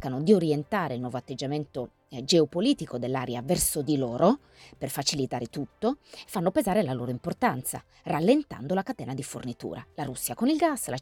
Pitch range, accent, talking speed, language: 135-195 Hz, native, 165 wpm, Italian